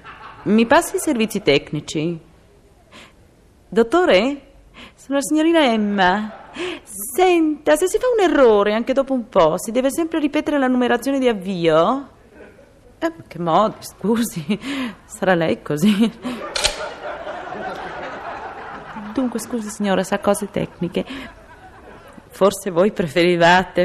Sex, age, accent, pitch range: female, 30-49, native, 190-295 Hz